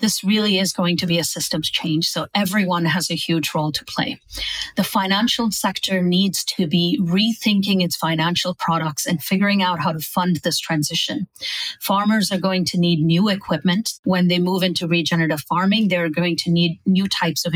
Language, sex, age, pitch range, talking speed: English, female, 30-49, 170-205 Hz, 190 wpm